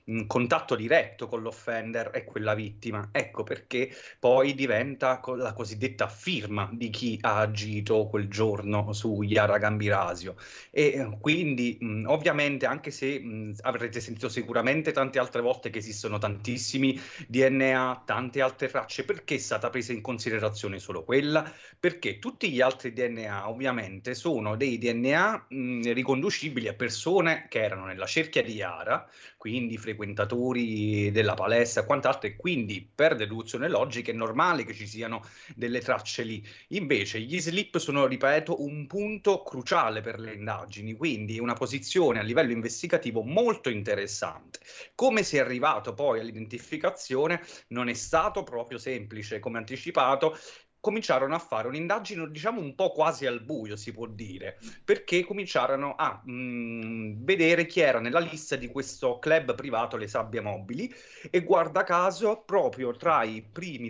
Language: Italian